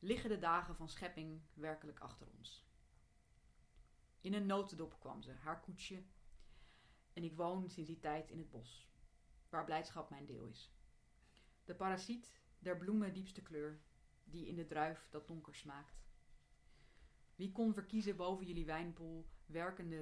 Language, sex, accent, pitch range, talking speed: Dutch, female, Dutch, 145-180 Hz, 145 wpm